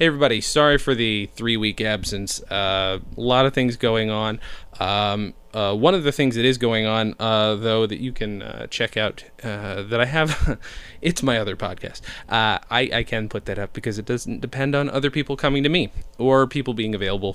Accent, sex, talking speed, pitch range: American, male, 210 wpm, 105-125 Hz